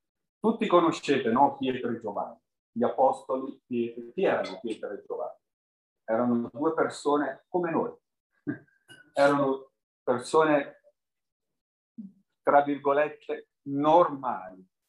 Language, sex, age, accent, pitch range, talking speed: Italian, male, 50-69, native, 140-185 Hz, 95 wpm